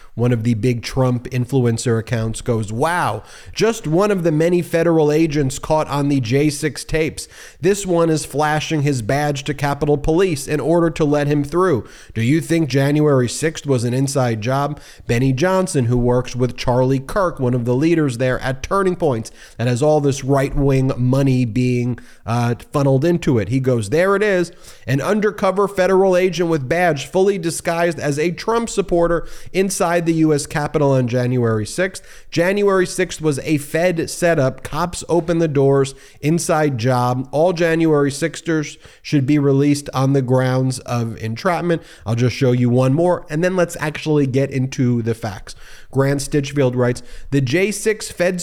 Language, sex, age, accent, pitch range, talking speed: English, male, 30-49, American, 125-165 Hz, 170 wpm